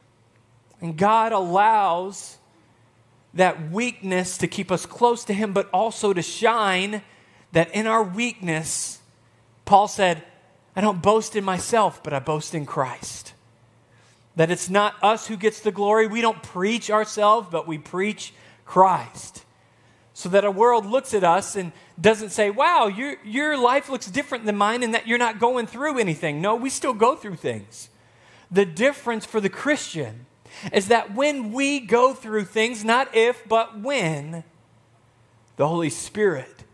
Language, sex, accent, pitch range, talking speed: English, male, American, 130-210 Hz, 160 wpm